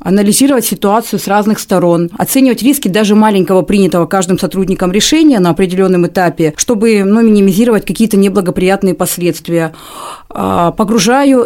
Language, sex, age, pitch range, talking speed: Russian, female, 30-49, 180-225 Hz, 120 wpm